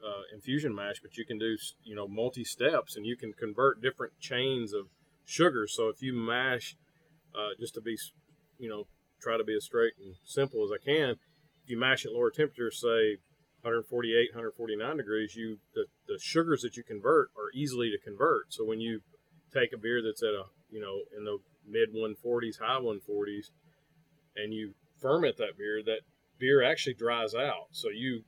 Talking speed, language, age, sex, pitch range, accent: 185 wpm, English, 40-59, male, 110-160 Hz, American